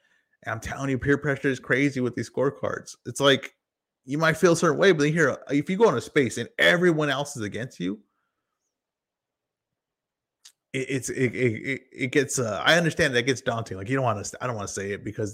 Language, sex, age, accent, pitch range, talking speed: English, male, 20-39, American, 115-145 Hz, 225 wpm